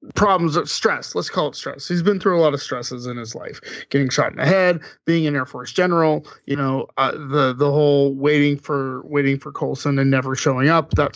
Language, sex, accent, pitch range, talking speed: English, male, American, 140-175 Hz, 230 wpm